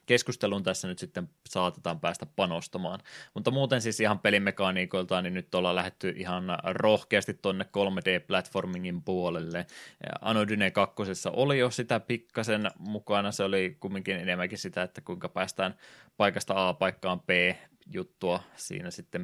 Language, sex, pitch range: Finnish, male, 90-110 Hz